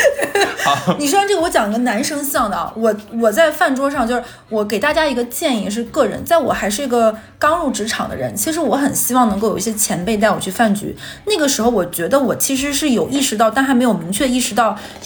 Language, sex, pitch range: Chinese, female, 205-270 Hz